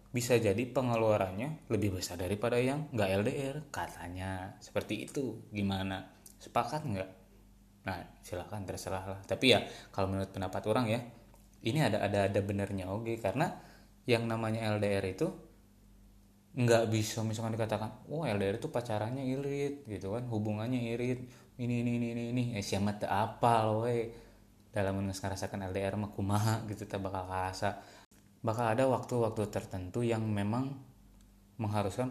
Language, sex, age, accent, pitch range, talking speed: Indonesian, male, 20-39, native, 100-120 Hz, 140 wpm